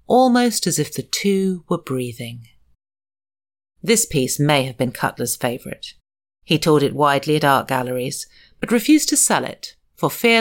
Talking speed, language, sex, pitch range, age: 160 wpm, English, female, 125-165 Hz, 40-59